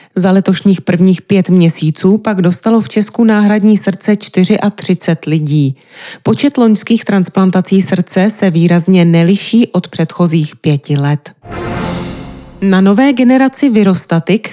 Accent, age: native, 30-49